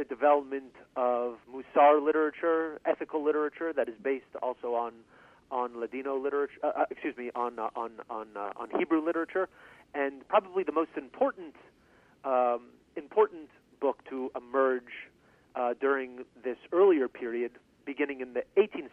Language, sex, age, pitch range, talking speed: English, male, 40-59, 125-155 Hz, 145 wpm